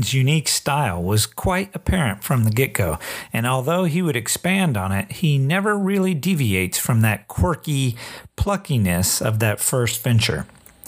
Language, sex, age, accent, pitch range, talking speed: English, male, 50-69, American, 115-155 Hz, 150 wpm